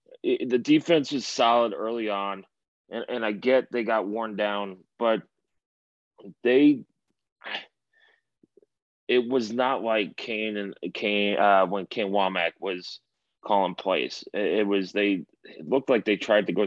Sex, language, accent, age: male, English, American, 20-39